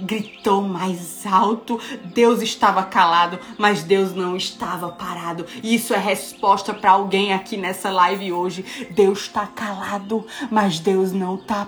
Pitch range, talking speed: 200-265 Hz, 140 wpm